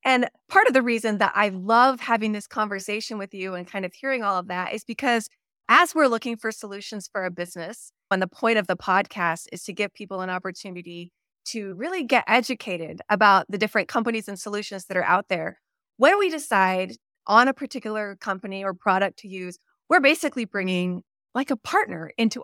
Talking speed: 200 wpm